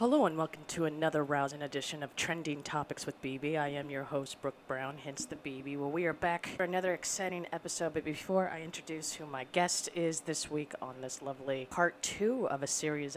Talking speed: 215 wpm